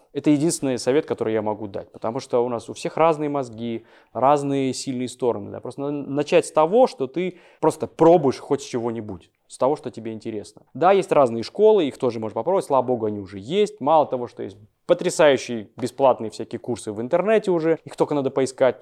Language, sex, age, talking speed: Russian, male, 20-39, 200 wpm